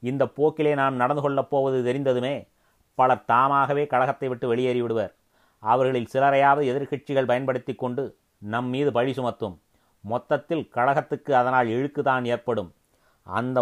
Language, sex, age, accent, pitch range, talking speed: Tamil, male, 30-49, native, 125-140 Hz, 115 wpm